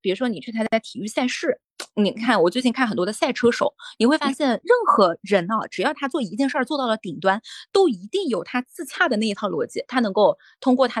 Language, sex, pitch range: Chinese, female, 200-260 Hz